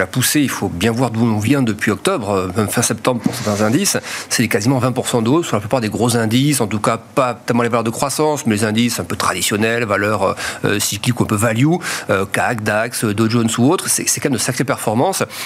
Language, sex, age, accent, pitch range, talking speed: French, male, 40-59, French, 110-135 Hz, 245 wpm